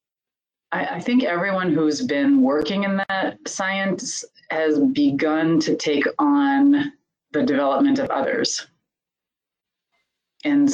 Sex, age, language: female, 30-49, English